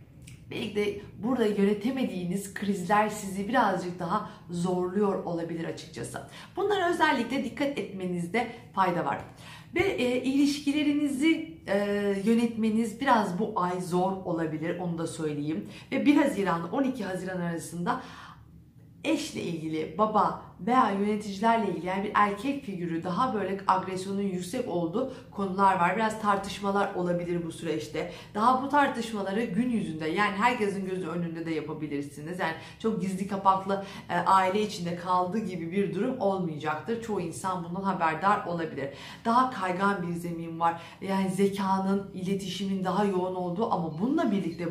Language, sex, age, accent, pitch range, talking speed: Turkish, female, 50-69, native, 175-215 Hz, 130 wpm